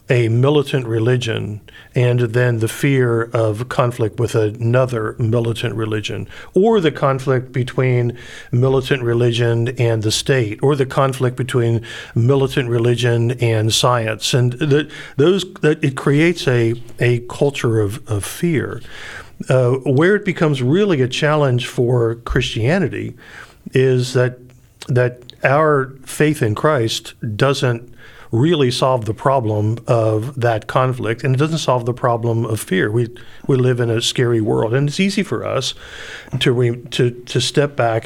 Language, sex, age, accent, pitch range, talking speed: English, male, 50-69, American, 115-135 Hz, 145 wpm